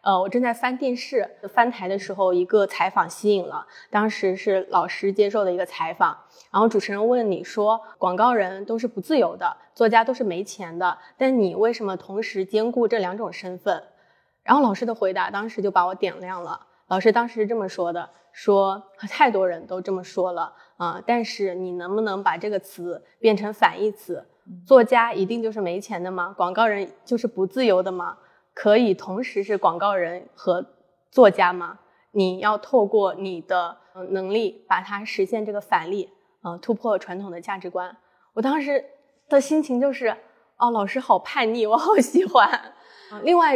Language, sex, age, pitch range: Chinese, female, 20-39, 185-240 Hz